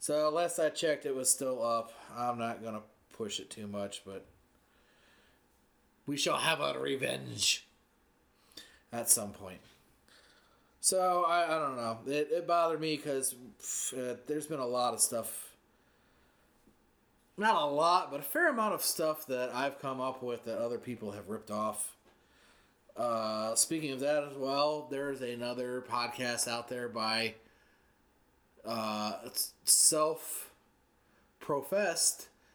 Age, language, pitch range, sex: 30-49, English, 115-140 Hz, male